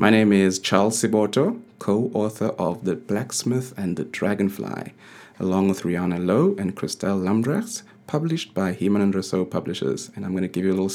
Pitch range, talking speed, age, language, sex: 95-115 Hz, 180 wpm, 30-49, English, male